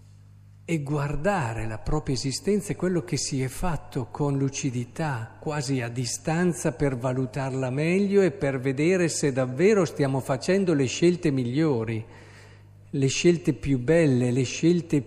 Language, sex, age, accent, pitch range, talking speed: Italian, male, 50-69, native, 115-150 Hz, 140 wpm